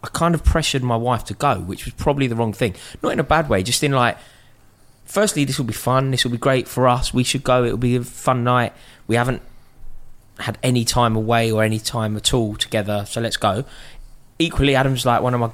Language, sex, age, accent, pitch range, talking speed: English, male, 20-39, British, 100-125 Hz, 240 wpm